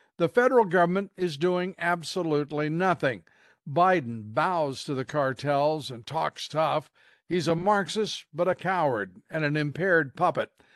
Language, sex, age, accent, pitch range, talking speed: English, male, 50-69, American, 145-180 Hz, 140 wpm